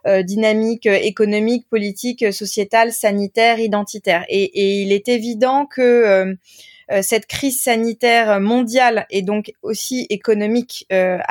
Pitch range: 210-260 Hz